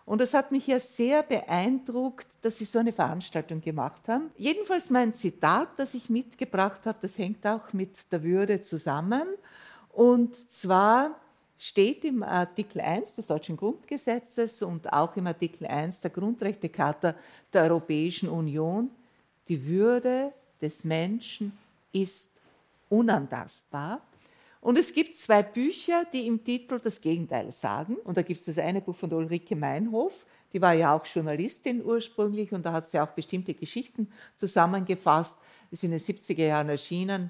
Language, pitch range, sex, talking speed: German, 165-235 Hz, female, 155 wpm